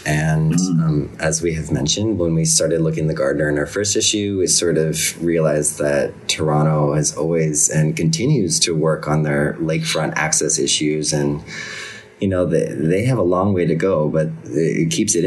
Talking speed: 195 wpm